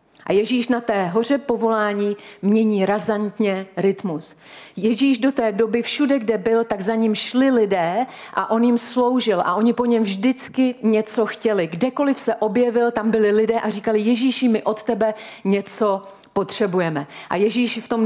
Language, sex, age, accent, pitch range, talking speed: Czech, female, 40-59, native, 205-235 Hz, 165 wpm